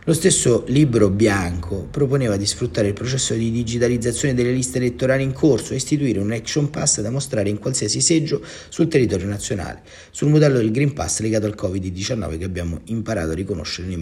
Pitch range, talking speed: 90-115 Hz, 185 wpm